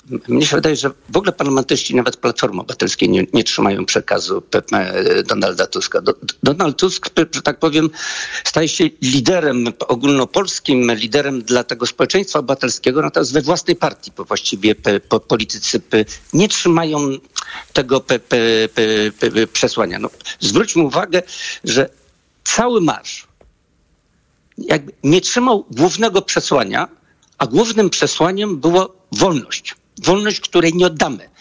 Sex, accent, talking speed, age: male, native, 115 wpm, 50-69